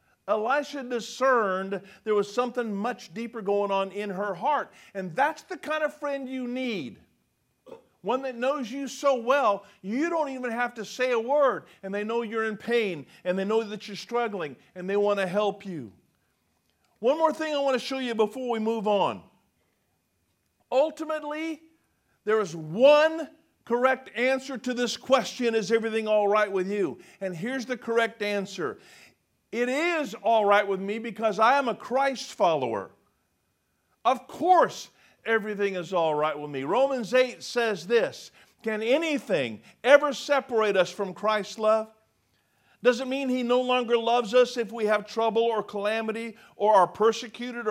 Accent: American